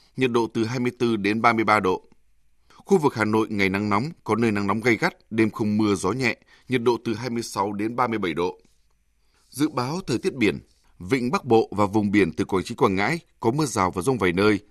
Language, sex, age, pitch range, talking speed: Vietnamese, male, 20-39, 105-135 Hz, 225 wpm